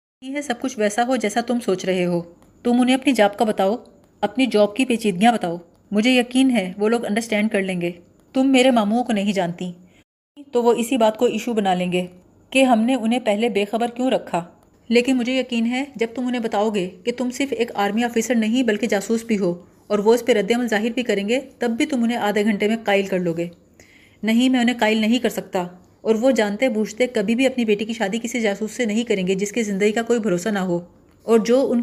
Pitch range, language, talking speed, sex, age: 200-245 Hz, Urdu, 245 wpm, female, 30-49